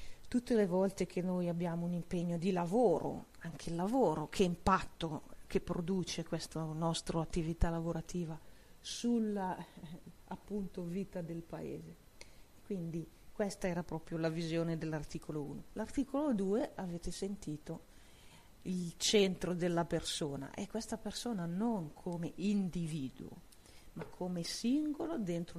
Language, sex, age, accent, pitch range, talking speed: Italian, female, 40-59, native, 160-185 Hz, 120 wpm